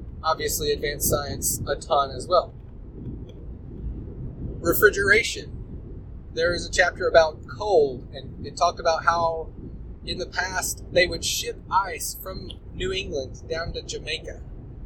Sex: male